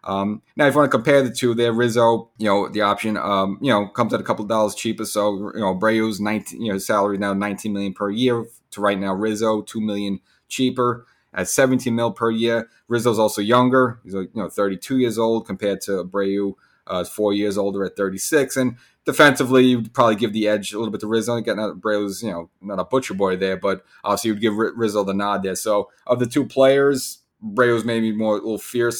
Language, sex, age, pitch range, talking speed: English, male, 30-49, 100-120 Hz, 230 wpm